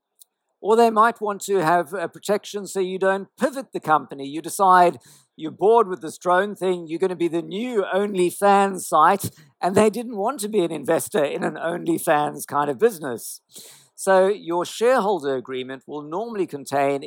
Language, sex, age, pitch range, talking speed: English, male, 50-69, 150-205 Hz, 180 wpm